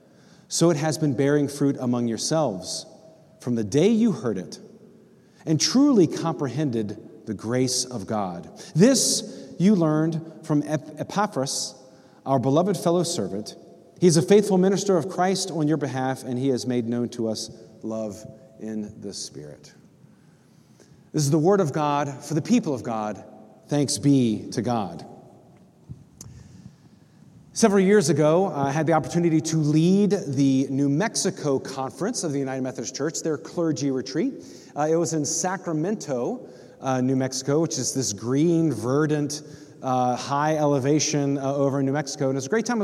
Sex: male